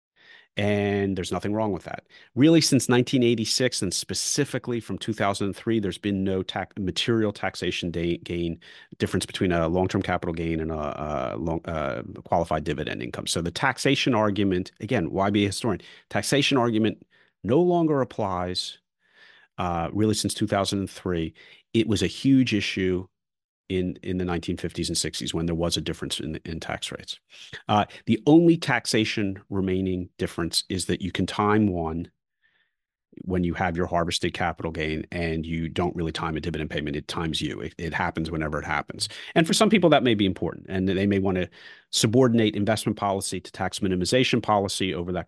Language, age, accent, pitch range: English, 40-59, American, 90-110 Hz